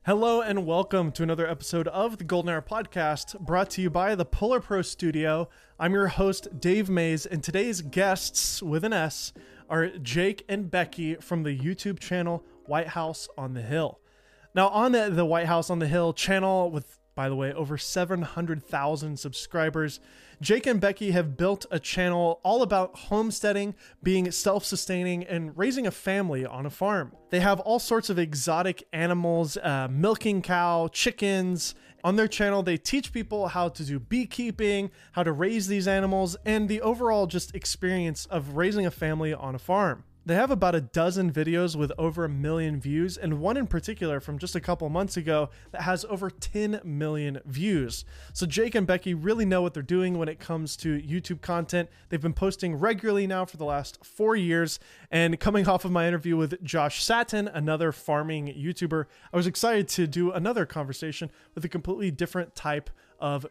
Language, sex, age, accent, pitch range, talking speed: English, male, 20-39, American, 160-195 Hz, 185 wpm